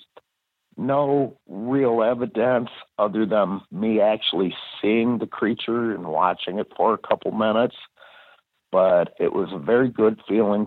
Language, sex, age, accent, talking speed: English, male, 60-79, American, 135 wpm